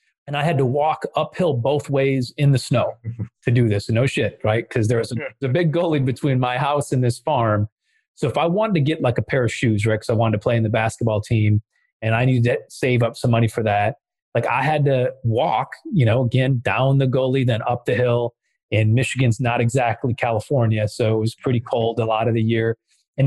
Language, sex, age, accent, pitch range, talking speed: English, male, 30-49, American, 115-130 Hz, 240 wpm